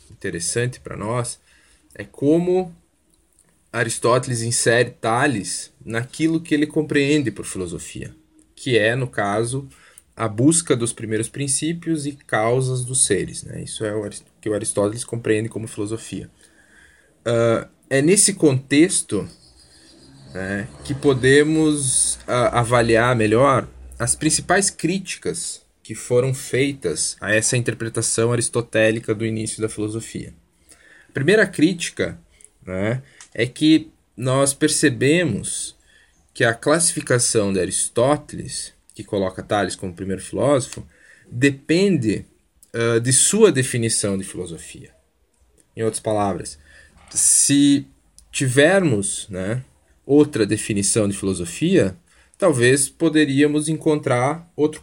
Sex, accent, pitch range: male, Brazilian, 105-150 Hz